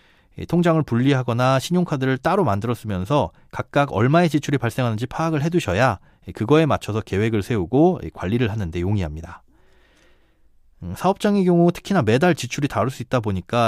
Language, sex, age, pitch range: Korean, male, 30-49, 105-160 Hz